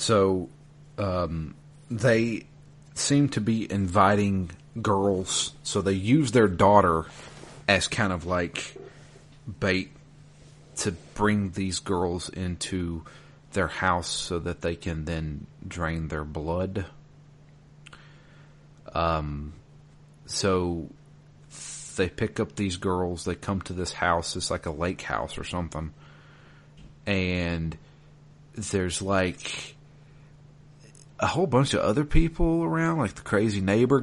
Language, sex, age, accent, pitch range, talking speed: English, male, 40-59, American, 90-145 Hz, 115 wpm